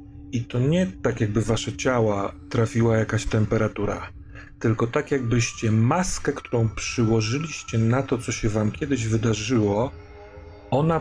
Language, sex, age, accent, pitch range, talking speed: Polish, male, 40-59, native, 100-125 Hz, 130 wpm